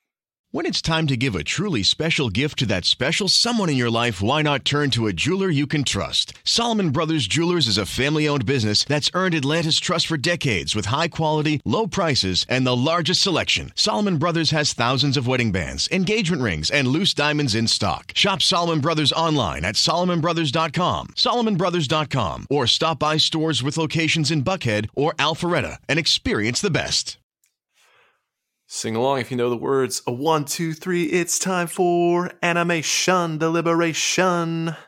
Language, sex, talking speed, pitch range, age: English, male, 165 wpm, 115-165 Hz, 30-49